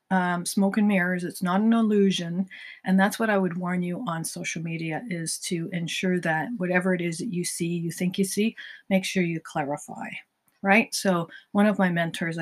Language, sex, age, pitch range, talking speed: English, female, 50-69, 175-200 Hz, 205 wpm